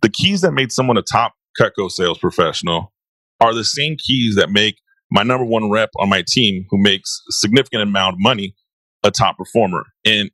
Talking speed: 195 wpm